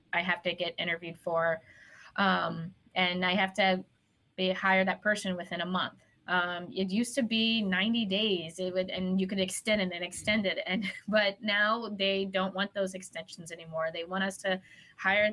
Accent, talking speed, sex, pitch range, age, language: American, 190 wpm, female, 175-195 Hz, 20-39, English